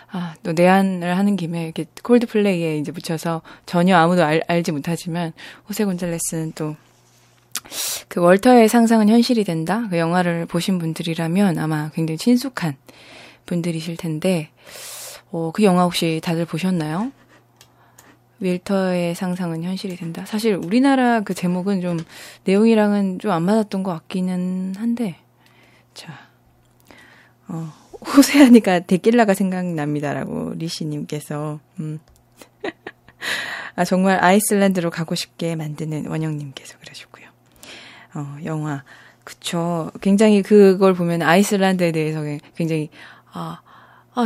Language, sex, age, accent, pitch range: Korean, female, 20-39, native, 160-195 Hz